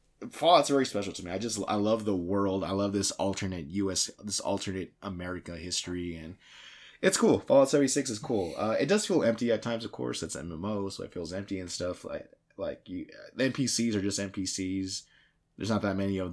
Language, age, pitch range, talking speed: English, 20-39, 90-110 Hz, 215 wpm